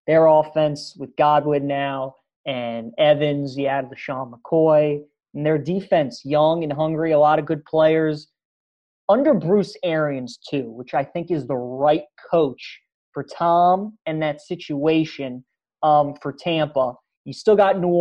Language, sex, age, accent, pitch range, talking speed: English, male, 30-49, American, 150-175 Hz, 155 wpm